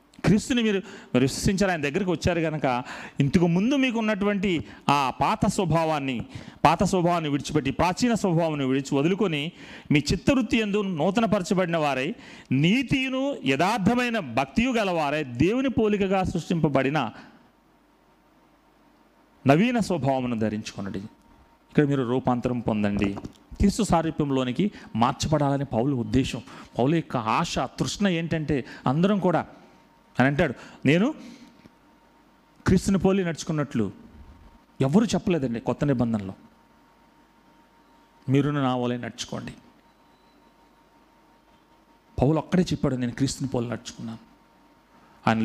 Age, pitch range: 40-59, 130-195 Hz